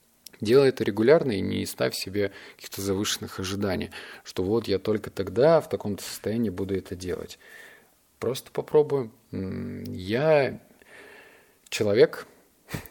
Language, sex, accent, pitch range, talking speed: Russian, male, native, 95-115 Hz, 115 wpm